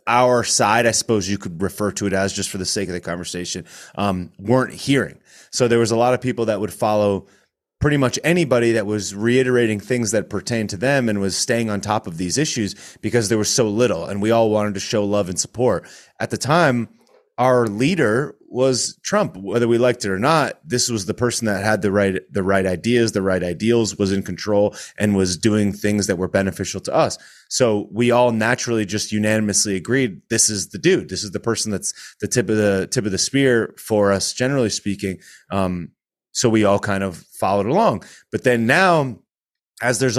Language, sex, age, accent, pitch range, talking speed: English, male, 30-49, American, 100-125 Hz, 215 wpm